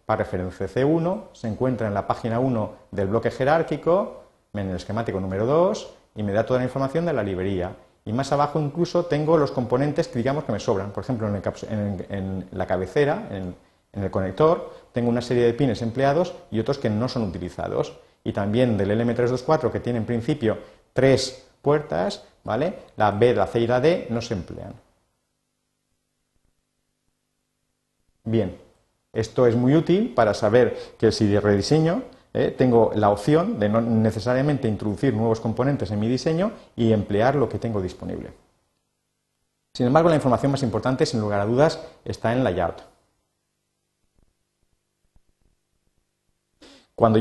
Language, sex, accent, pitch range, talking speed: Spanish, male, Spanish, 110-145 Hz, 160 wpm